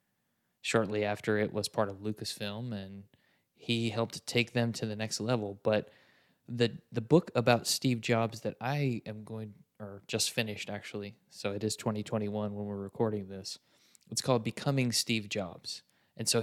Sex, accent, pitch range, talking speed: male, American, 105-115 Hz, 170 wpm